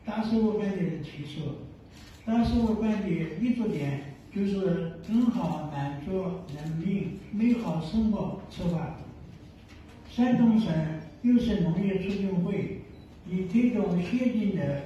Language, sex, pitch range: Chinese, male, 160-220 Hz